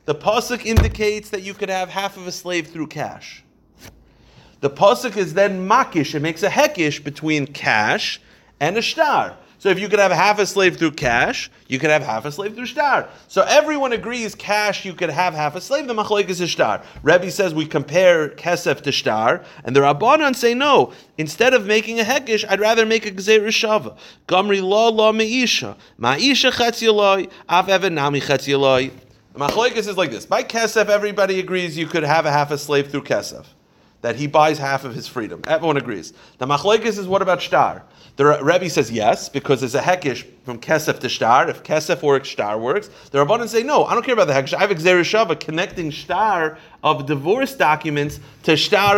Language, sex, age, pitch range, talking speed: English, male, 30-49, 155-215 Hz, 190 wpm